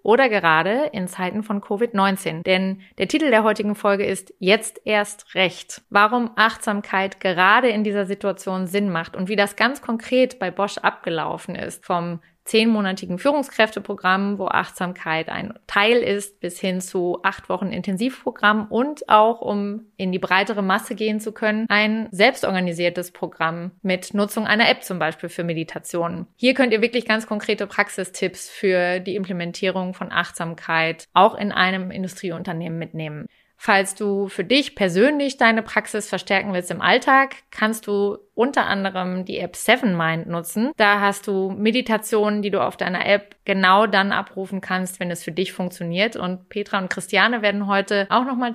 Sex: female